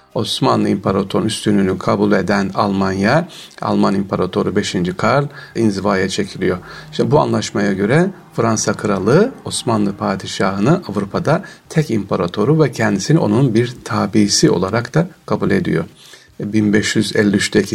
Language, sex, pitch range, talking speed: Turkish, male, 105-140 Hz, 110 wpm